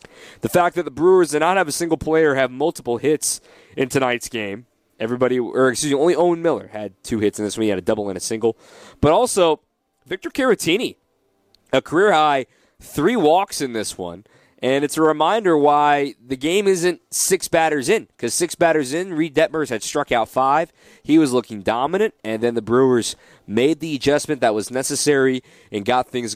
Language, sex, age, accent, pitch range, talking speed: English, male, 20-39, American, 115-155 Hz, 200 wpm